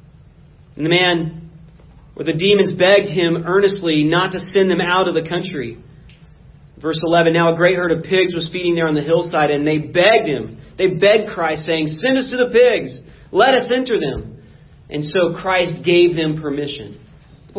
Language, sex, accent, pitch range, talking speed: English, male, American, 150-195 Hz, 190 wpm